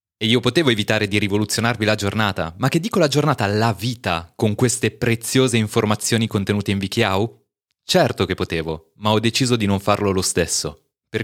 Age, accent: 20-39, native